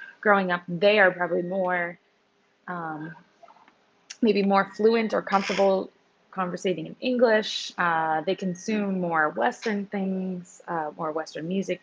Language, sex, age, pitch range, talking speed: English, female, 20-39, 170-205 Hz, 125 wpm